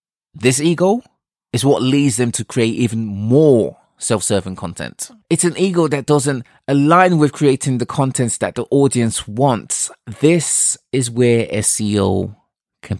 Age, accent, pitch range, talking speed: 20-39, British, 110-145 Hz, 145 wpm